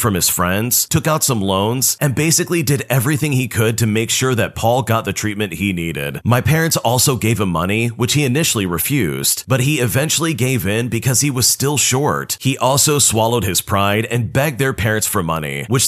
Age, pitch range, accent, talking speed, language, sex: 30-49, 105-140 Hz, American, 210 wpm, English, male